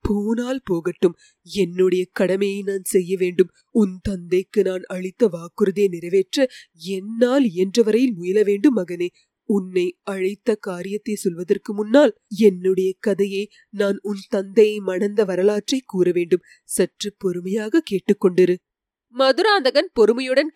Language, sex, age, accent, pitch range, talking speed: English, female, 20-39, Indian, 190-235 Hz, 110 wpm